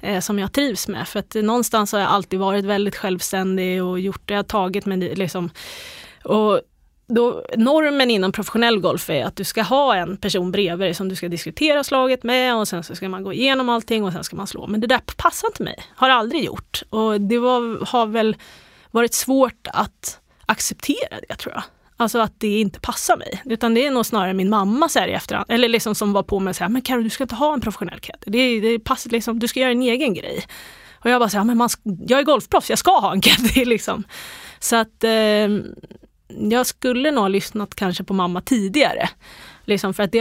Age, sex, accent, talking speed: 30-49, female, native, 220 wpm